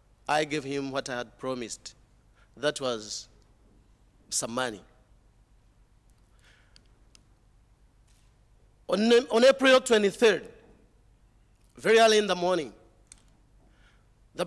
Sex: male